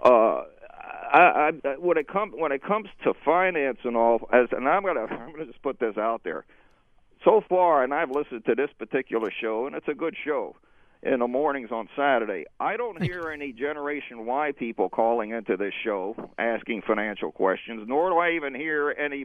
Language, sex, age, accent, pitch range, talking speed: English, male, 50-69, American, 125-170 Hz, 205 wpm